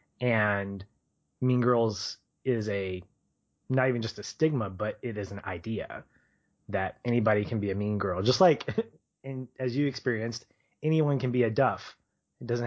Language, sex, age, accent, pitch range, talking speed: English, male, 20-39, American, 105-125 Hz, 165 wpm